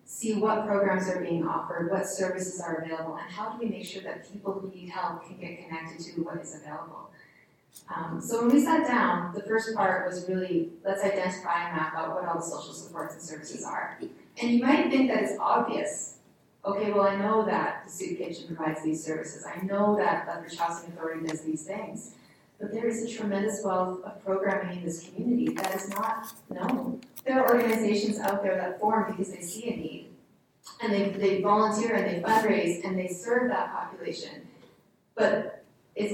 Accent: American